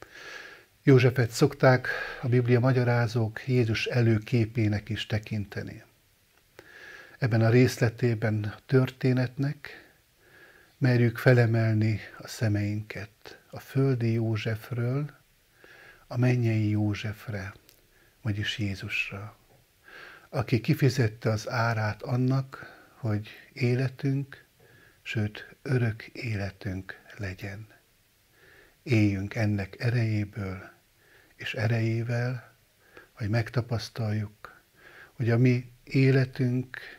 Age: 60-79